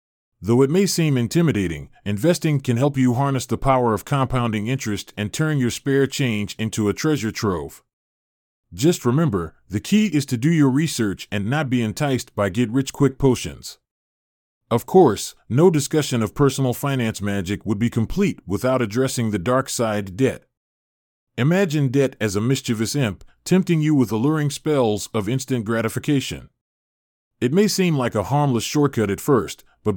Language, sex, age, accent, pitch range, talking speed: English, male, 30-49, American, 105-140 Hz, 160 wpm